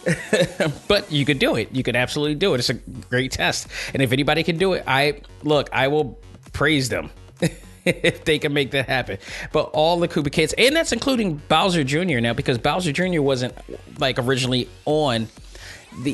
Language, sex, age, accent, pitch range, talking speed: English, male, 20-39, American, 125-150 Hz, 190 wpm